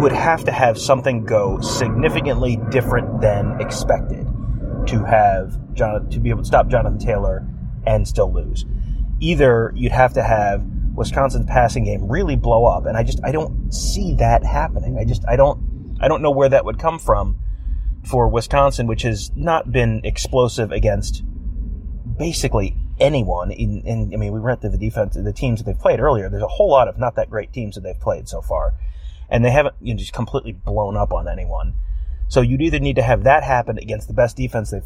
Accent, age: American, 30-49